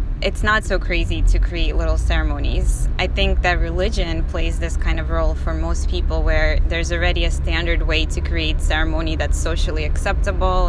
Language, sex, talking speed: English, female, 180 wpm